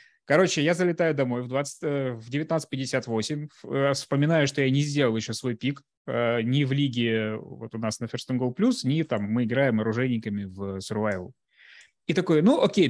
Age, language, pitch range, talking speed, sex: 20-39, Russian, 120-160 Hz, 170 wpm, male